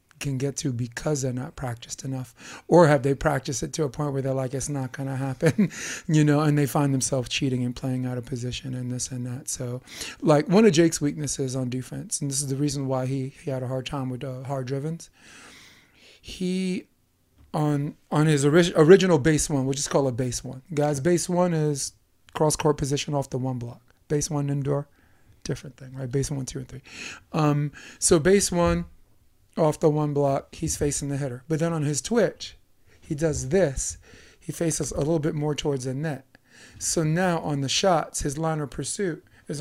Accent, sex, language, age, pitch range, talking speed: American, male, English, 30-49, 130-160 Hz, 210 wpm